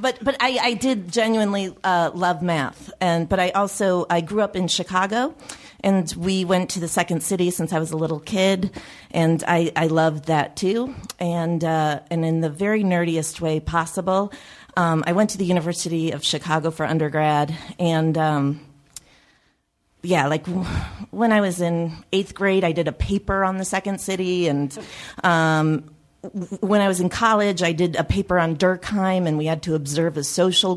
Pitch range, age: 160-190 Hz, 40-59